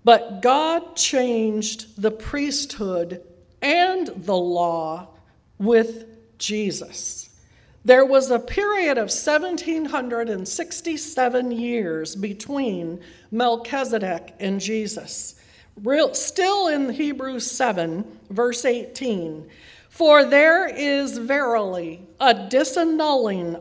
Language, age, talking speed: English, 50-69, 85 wpm